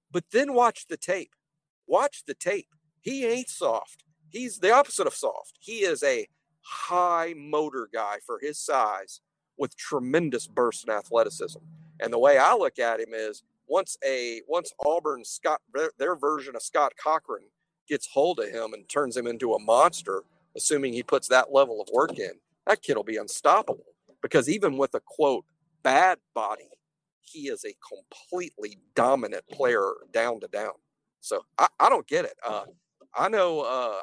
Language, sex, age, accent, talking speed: English, male, 50-69, American, 170 wpm